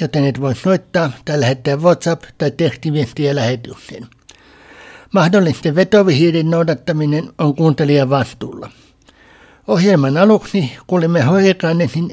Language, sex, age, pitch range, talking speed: Finnish, male, 60-79, 150-185 Hz, 100 wpm